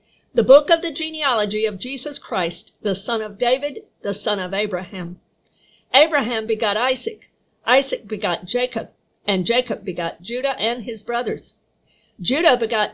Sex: female